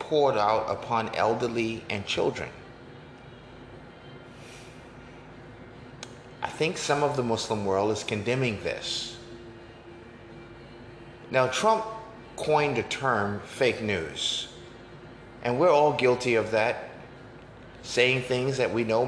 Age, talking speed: 30-49, 105 wpm